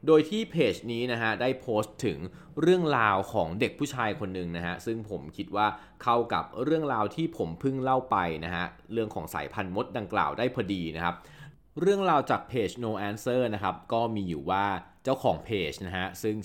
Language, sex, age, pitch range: Thai, male, 20-39, 90-120 Hz